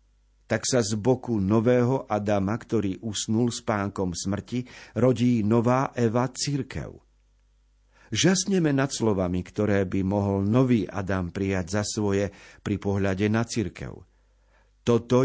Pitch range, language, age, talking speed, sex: 95-130 Hz, Slovak, 50-69, 120 wpm, male